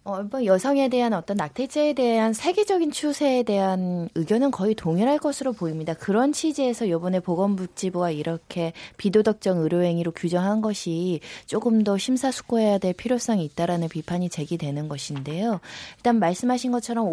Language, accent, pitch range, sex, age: Korean, native, 175-245 Hz, female, 20-39